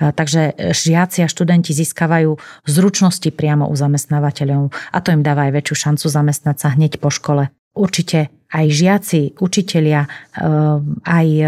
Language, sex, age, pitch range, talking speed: Slovak, female, 30-49, 150-165 Hz, 135 wpm